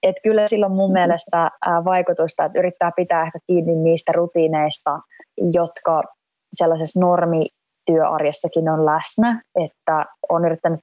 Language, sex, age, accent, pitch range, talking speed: Finnish, female, 20-39, native, 160-210 Hz, 115 wpm